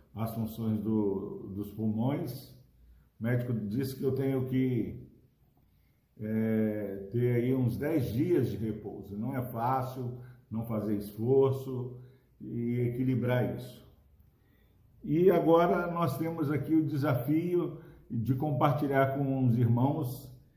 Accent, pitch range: Brazilian, 110-135 Hz